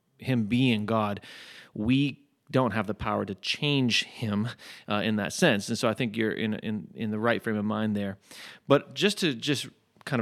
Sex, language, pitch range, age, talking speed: male, English, 105-125 Hz, 30-49, 200 wpm